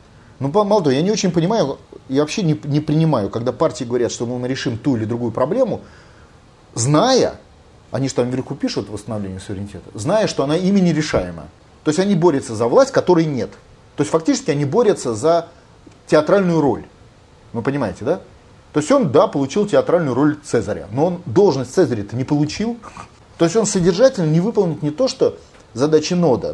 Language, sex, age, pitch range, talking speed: Russian, male, 30-49, 125-180 Hz, 180 wpm